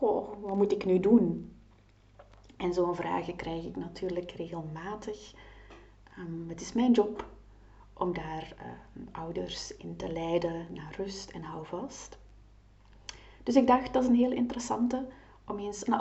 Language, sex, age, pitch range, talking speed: Dutch, female, 30-49, 165-210 Hz, 150 wpm